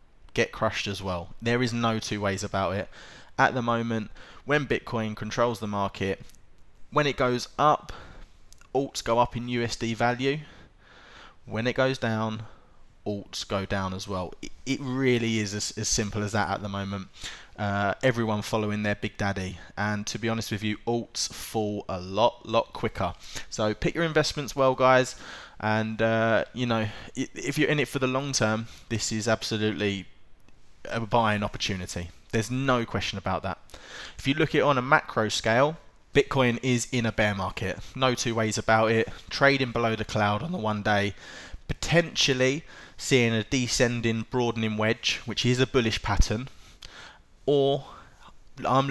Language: English